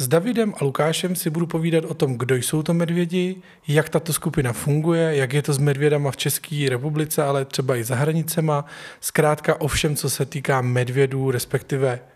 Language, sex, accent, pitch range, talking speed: Czech, male, native, 135-160 Hz, 190 wpm